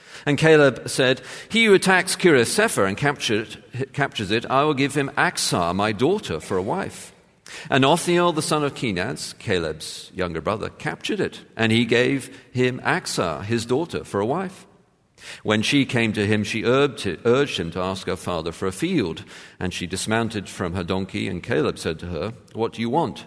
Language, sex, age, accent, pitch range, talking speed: English, male, 50-69, British, 95-135 Hz, 185 wpm